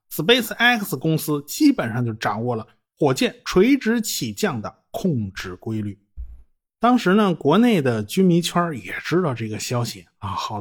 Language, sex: Chinese, male